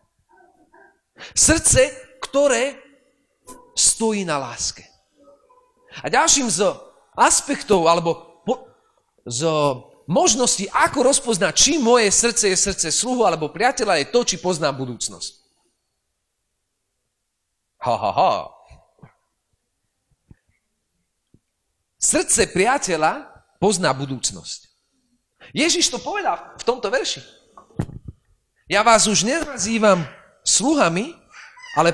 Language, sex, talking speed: Slovak, male, 85 wpm